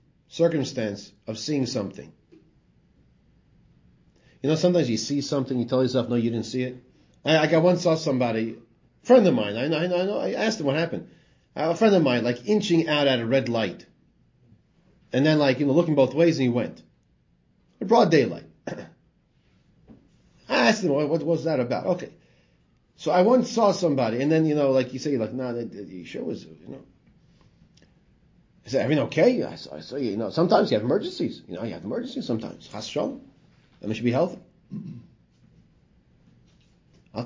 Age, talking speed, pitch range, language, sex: 40-59, 185 wpm, 115-170 Hz, English, male